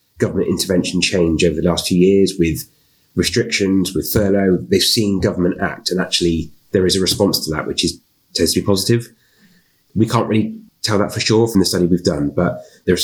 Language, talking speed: English, 200 wpm